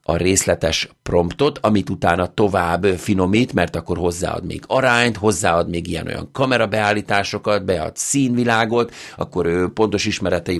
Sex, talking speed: male, 130 wpm